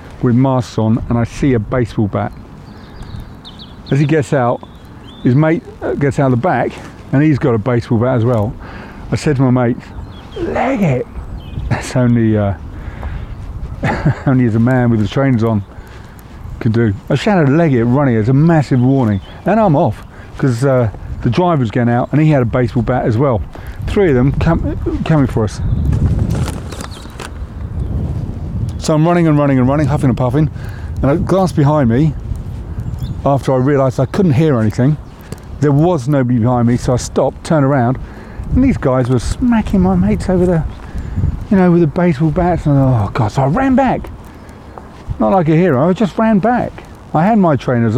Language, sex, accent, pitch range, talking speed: English, male, British, 115-155 Hz, 185 wpm